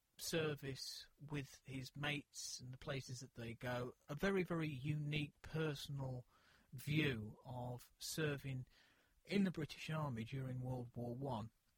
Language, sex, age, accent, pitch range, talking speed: English, male, 40-59, British, 115-145 Hz, 130 wpm